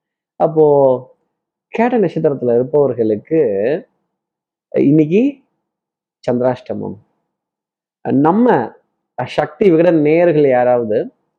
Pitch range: 125-165 Hz